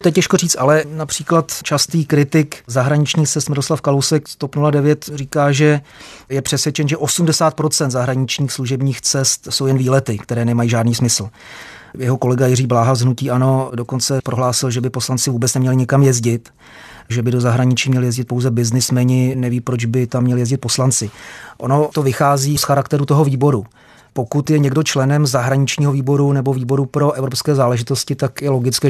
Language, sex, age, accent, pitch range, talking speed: Czech, male, 30-49, native, 125-140 Hz, 160 wpm